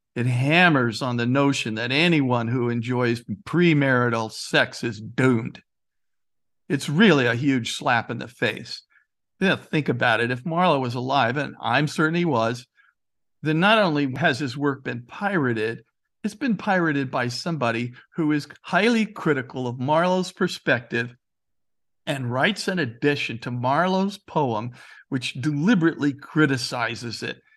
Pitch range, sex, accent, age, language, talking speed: 125-190 Hz, male, American, 50-69, English, 140 wpm